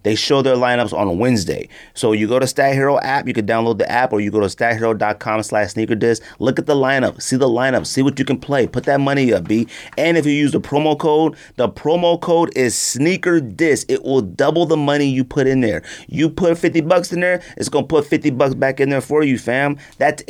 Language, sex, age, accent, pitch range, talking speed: English, male, 30-49, American, 115-150 Hz, 245 wpm